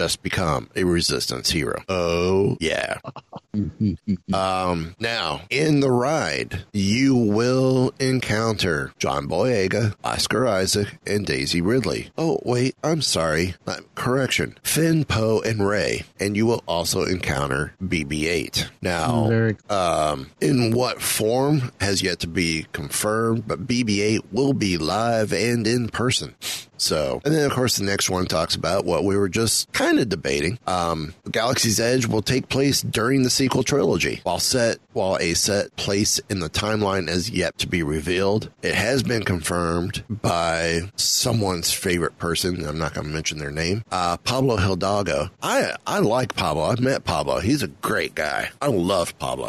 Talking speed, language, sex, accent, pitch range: 155 wpm, English, male, American, 90-115 Hz